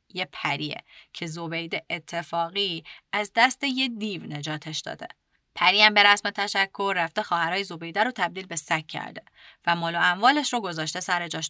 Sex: female